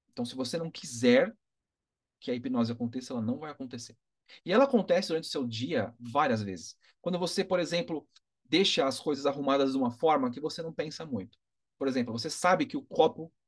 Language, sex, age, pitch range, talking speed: Portuguese, male, 30-49, 120-160 Hz, 200 wpm